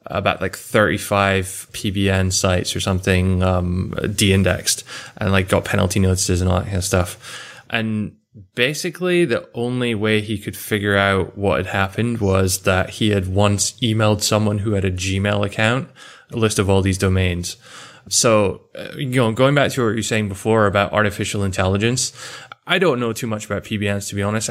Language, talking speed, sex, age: English, 180 wpm, male, 20-39